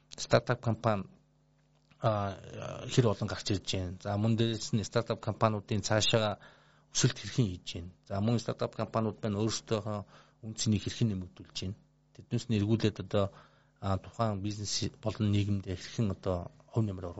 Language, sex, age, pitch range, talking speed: Russian, male, 50-69, 95-115 Hz, 90 wpm